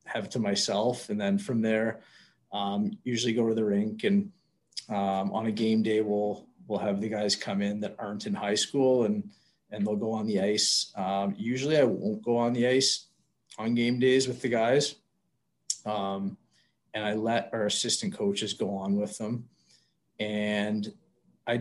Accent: American